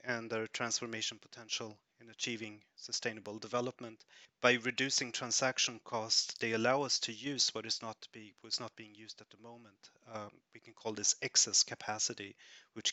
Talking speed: 170 wpm